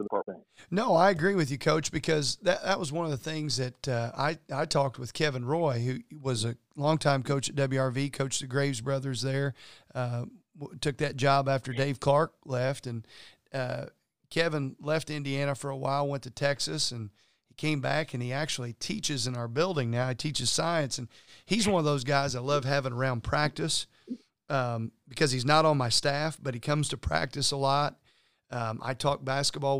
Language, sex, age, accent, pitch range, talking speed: English, male, 40-59, American, 130-155 Hz, 195 wpm